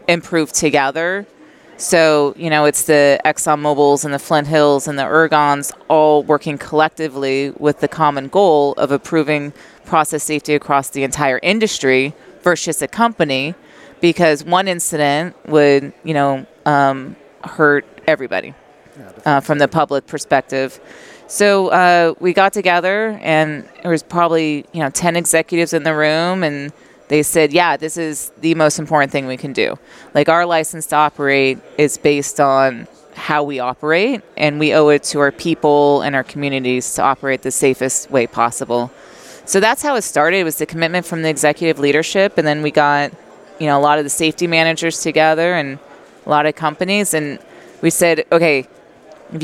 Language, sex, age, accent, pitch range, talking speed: English, female, 30-49, American, 145-170 Hz, 170 wpm